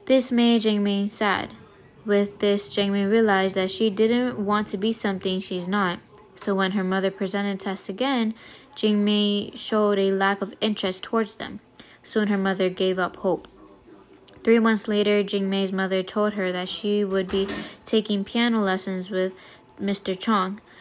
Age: 10-29